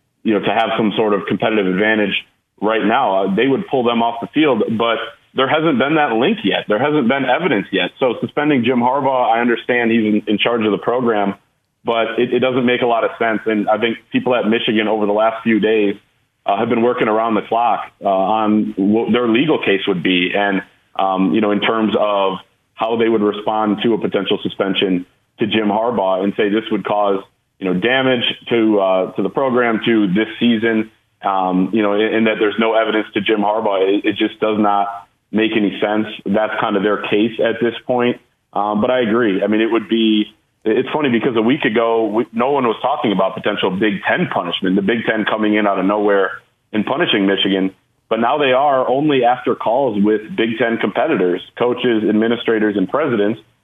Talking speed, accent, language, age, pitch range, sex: 215 wpm, American, English, 30-49, 105-115 Hz, male